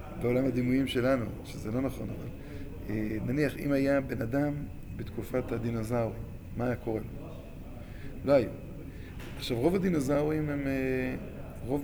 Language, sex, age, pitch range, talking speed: Hebrew, male, 20-39, 115-145 Hz, 115 wpm